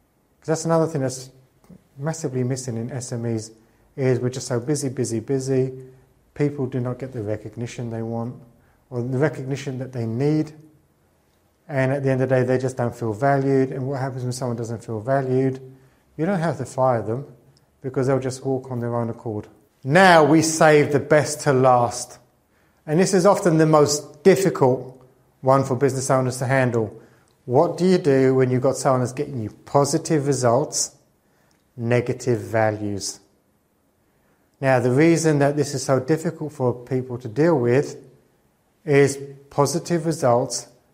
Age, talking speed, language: 30-49, 165 wpm, English